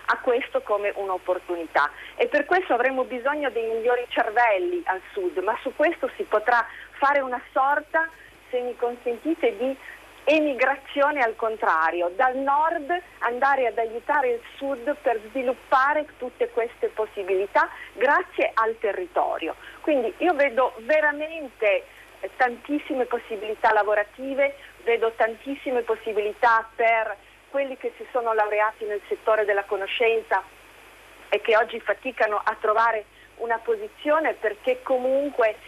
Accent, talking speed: native, 125 wpm